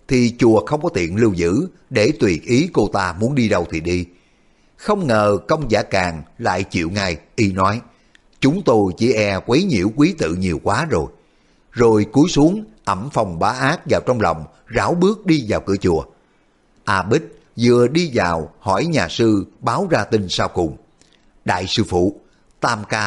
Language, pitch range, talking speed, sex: Vietnamese, 95-135 Hz, 190 wpm, male